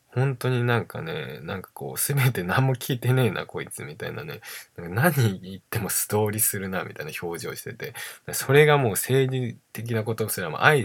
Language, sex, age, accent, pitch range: Japanese, male, 20-39, native, 95-125 Hz